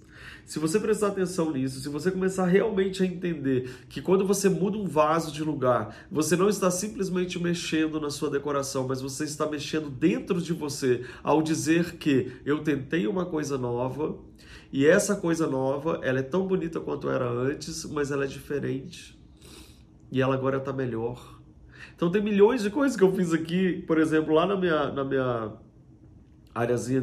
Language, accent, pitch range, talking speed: Portuguese, Brazilian, 130-170 Hz, 175 wpm